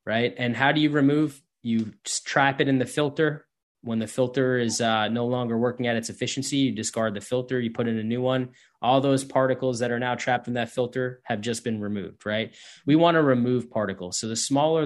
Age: 20-39